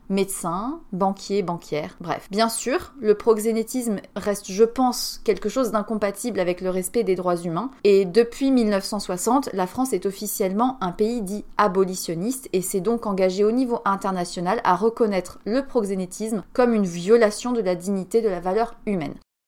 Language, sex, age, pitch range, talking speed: French, female, 30-49, 195-235 Hz, 160 wpm